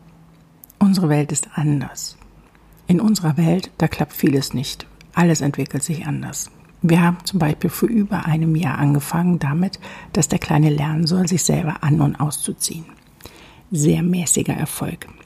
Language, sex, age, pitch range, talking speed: German, female, 60-79, 155-185 Hz, 150 wpm